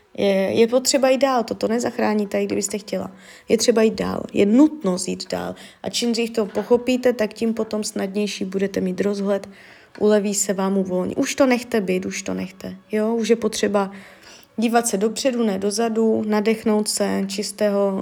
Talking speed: 175 wpm